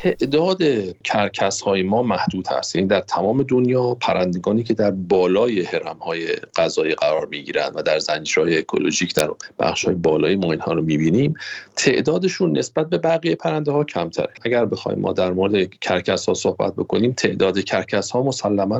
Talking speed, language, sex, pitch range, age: 170 wpm, Persian, male, 100-165 Hz, 40-59